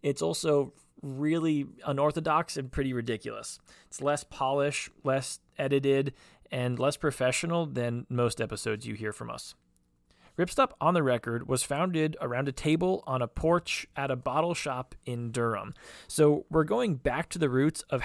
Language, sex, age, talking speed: English, male, 20-39, 160 wpm